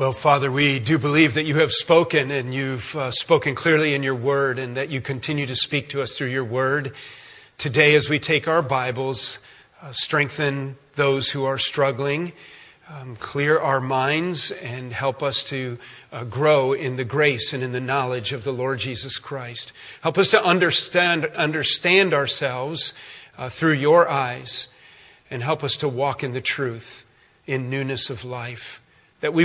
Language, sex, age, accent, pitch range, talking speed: English, male, 40-59, American, 130-160 Hz, 175 wpm